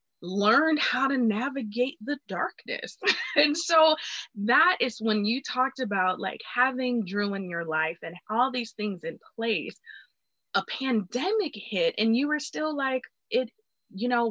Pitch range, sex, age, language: 215-290 Hz, female, 20-39, English